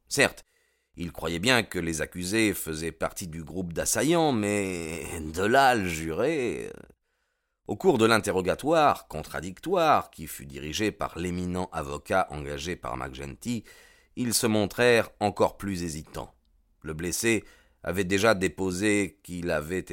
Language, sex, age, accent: French, male, 40-59, French